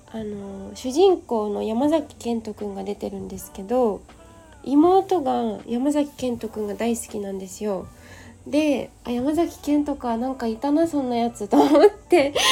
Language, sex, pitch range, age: Japanese, female, 215-290 Hz, 20-39